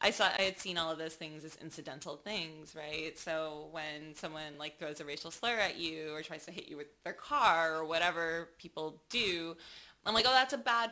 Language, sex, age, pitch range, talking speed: English, female, 20-39, 160-225 Hz, 225 wpm